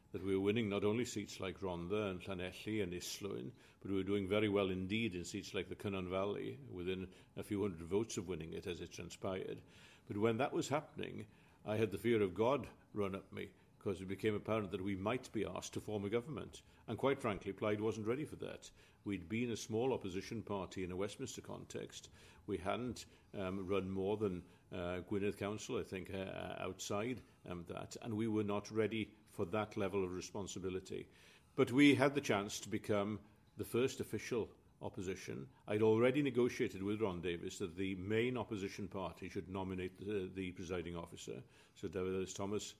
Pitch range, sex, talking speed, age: 95-115 Hz, male, 195 wpm, 50-69